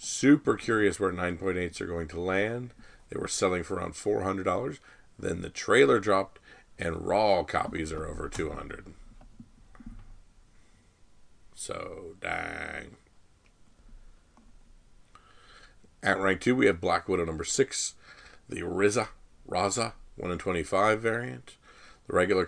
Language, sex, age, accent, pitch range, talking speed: English, male, 40-59, American, 90-110 Hz, 115 wpm